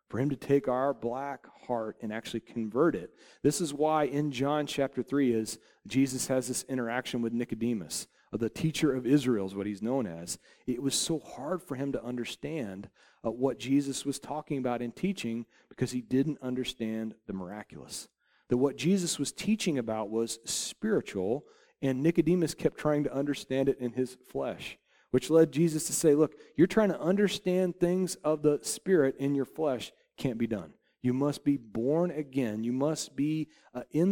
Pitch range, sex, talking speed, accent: 120-155 Hz, male, 180 wpm, American